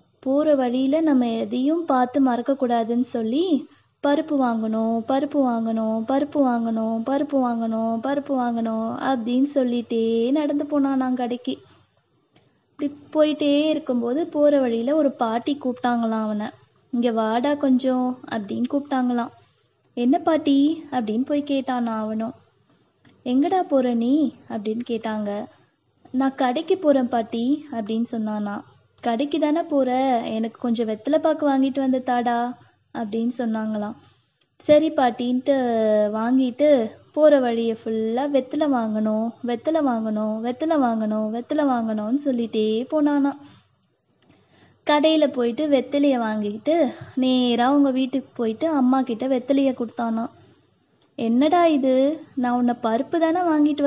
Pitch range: 230-285 Hz